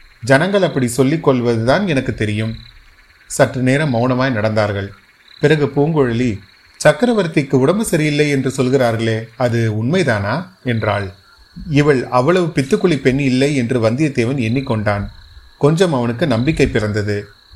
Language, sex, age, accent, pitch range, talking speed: Tamil, male, 30-49, native, 115-145 Hz, 110 wpm